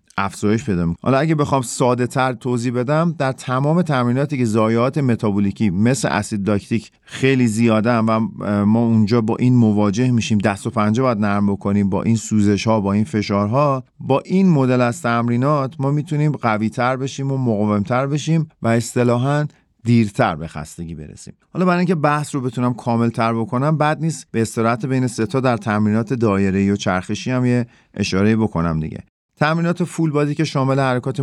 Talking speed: 180 wpm